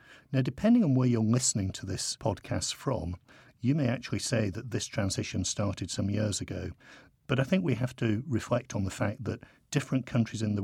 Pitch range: 105-130 Hz